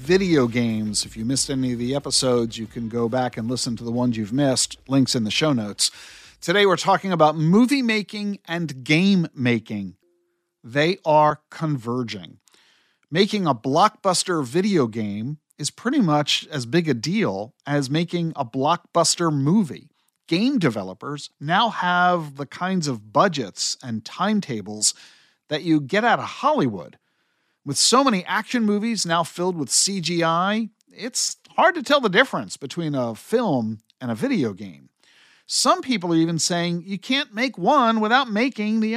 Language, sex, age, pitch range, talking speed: English, male, 50-69, 130-205 Hz, 160 wpm